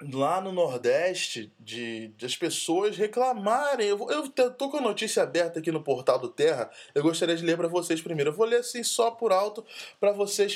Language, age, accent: English, 20-39, Brazilian